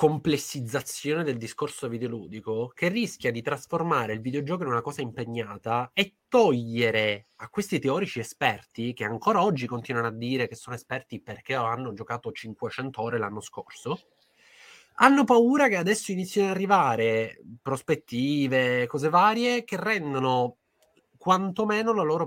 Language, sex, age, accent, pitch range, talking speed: Italian, male, 20-39, native, 115-160 Hz, 135 wpm